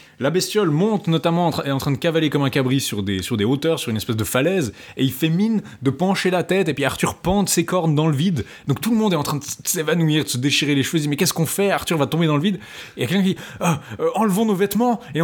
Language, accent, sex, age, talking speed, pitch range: French, French, male, 20-39, 300 wpm, 120-155 Hz